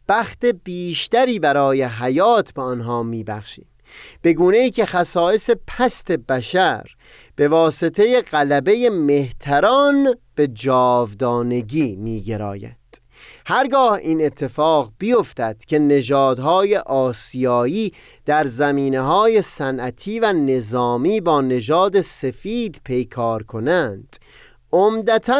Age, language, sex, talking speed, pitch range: 30-49, Persian, male, 90 wpm, 130-215 Hz